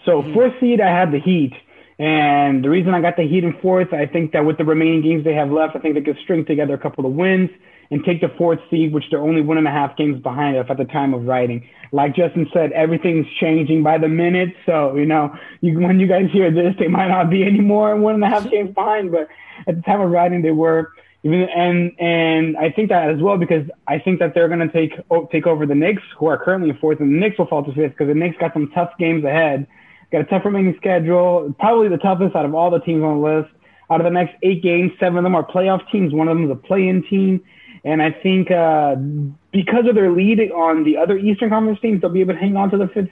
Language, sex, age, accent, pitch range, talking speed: English, male, 20-39, American, 155-185 Hz, 255 wpm